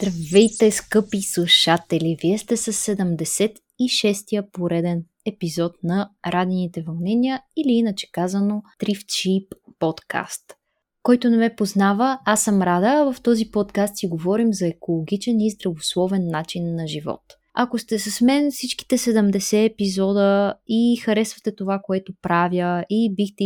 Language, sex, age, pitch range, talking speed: Bulgarian, female, 20-39, 180-225 Hz, 130 wpm